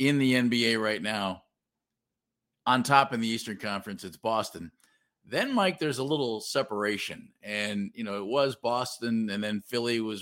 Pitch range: 110-130 Hz